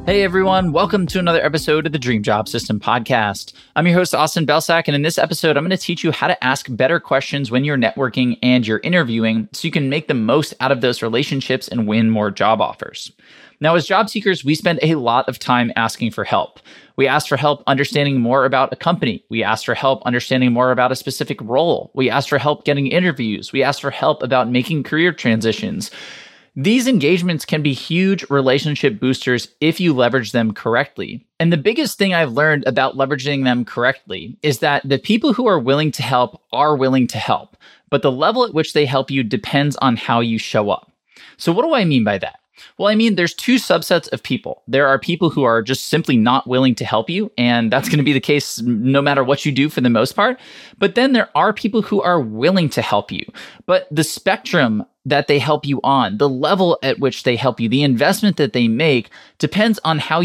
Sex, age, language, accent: male, 20-39, English, American